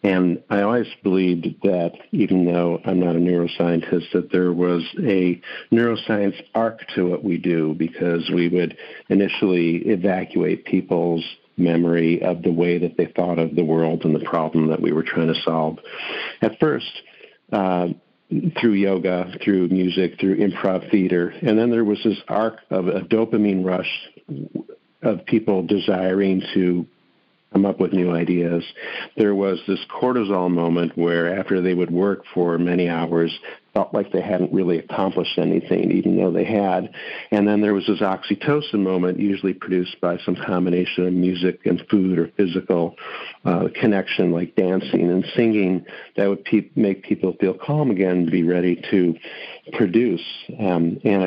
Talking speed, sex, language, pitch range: 160 wpm, male, English, 85-100 Hz